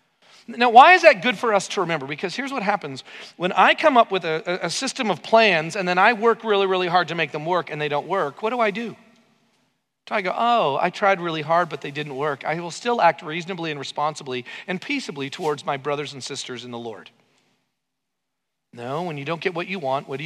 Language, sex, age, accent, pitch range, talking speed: English, male, 40-59, American, 145-225 Hz, 240 wpm